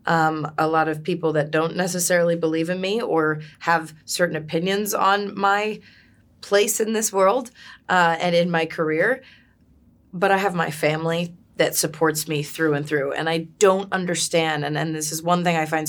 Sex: female